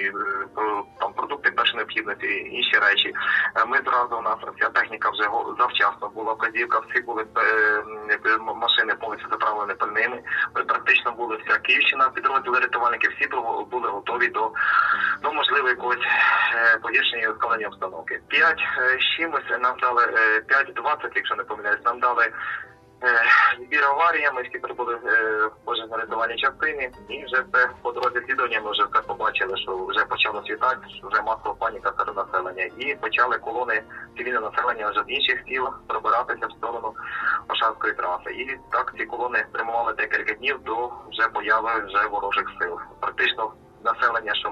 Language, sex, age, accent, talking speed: Ukrainian, male, 20-39, native, 145 wpm